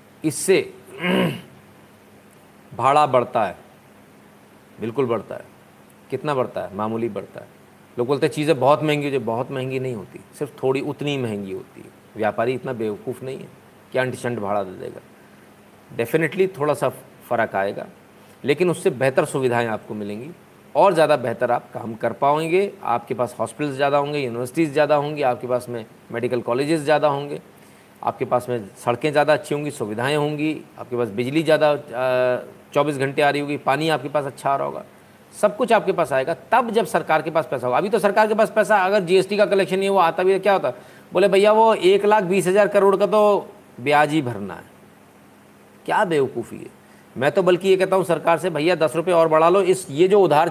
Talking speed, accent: 190 wpm, native